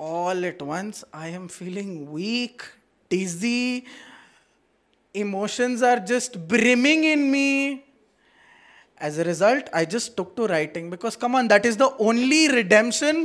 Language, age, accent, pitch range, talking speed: Hindi, 20-39, native, 170-250 Hz, 135 wpm